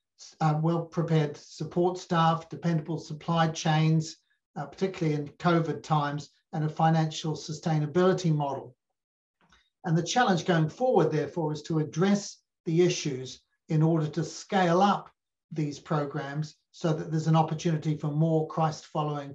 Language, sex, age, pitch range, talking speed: English, male, 60-79, 155-175 Hz, 135 wpm